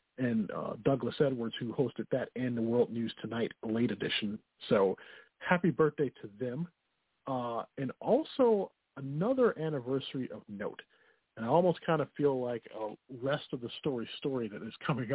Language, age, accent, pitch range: English, 40-59, American, 125-170 Hz